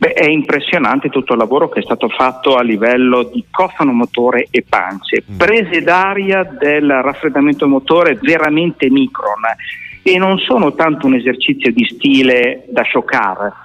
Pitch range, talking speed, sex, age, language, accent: 125-195 Hz, 150 wpm, male, 50-69, Italian, native